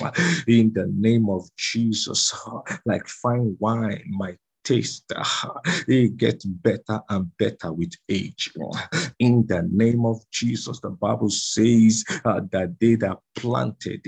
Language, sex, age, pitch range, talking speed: English, male, 50-69, 100-120 Hz, 125 wpm